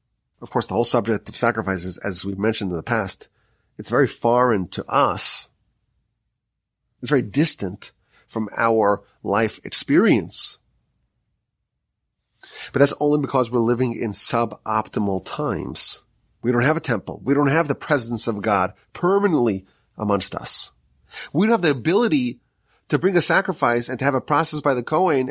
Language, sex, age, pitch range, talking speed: English, male, 30-49, 110-150 Hz, 155 wpm